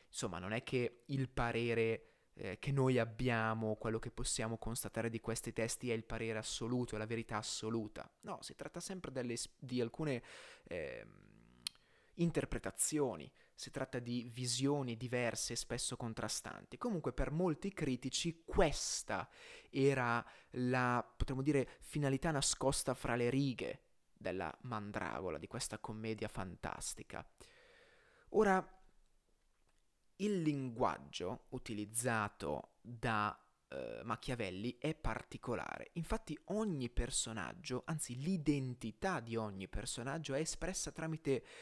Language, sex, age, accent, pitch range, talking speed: Italian, male, 20-39, native, 115-150 Hz, 115 wpm